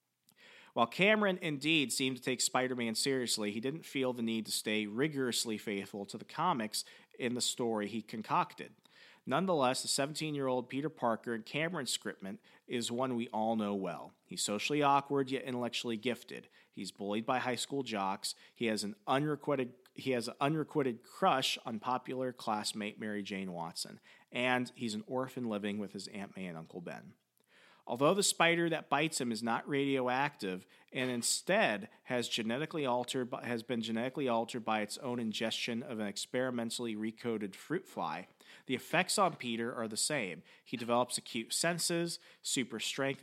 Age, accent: 40-59, American